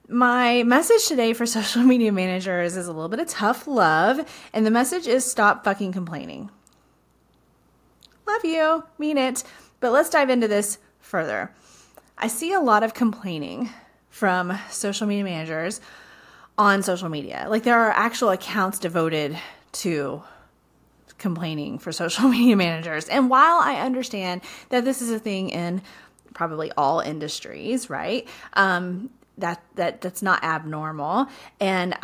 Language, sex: English, female